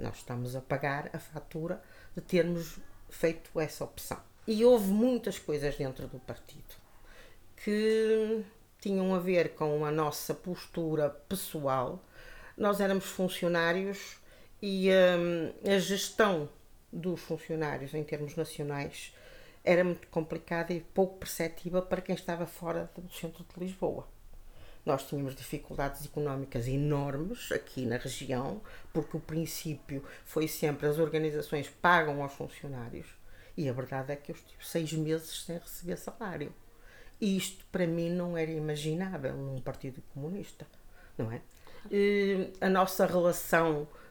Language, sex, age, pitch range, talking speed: Portuguese, female, 50-69, 150-185 Hz, 130 wpm